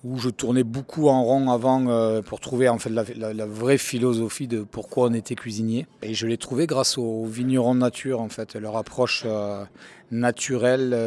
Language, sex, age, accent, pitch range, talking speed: French, male, 40-59, French, 110-125 Hz, 190 wpm